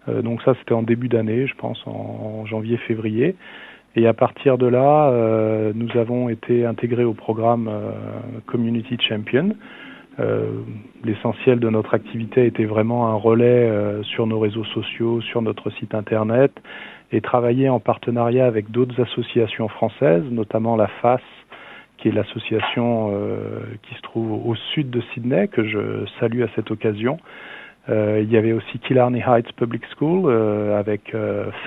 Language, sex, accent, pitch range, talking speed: French, male, French, 110-125 Hz, 155 wpm